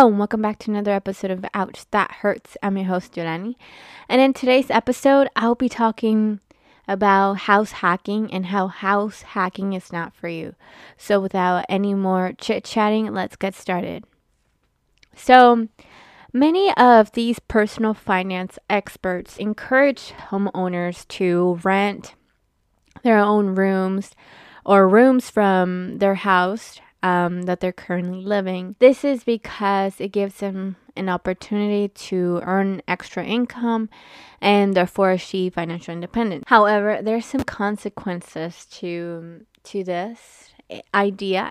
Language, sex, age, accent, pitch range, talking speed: English, female, 20-39, American, 185-220 Hz, 130 wpm